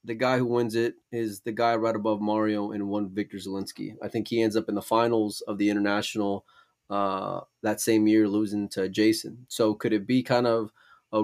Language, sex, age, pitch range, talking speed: English, male, 20-39, 100-115 Hz, 215 wpm